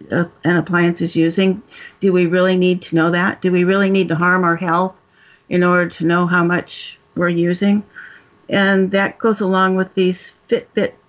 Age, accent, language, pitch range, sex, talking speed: 60-79, American, English, 175-200 Hz, female, 185 wpm